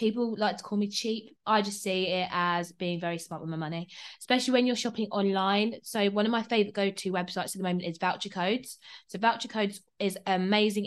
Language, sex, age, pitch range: English, female, 20-39, 180-210 Hz